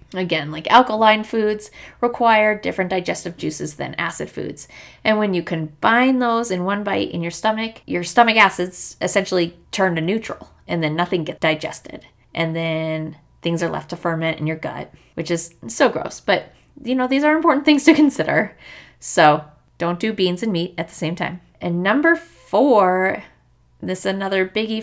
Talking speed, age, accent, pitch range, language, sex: 180 wpm, 20-39, American, 165-215 Hz, English, female